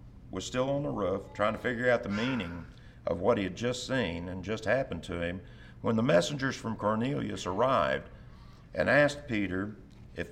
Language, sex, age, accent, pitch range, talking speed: English, male, 50-69, American, 100-130 Hz, 185 wpm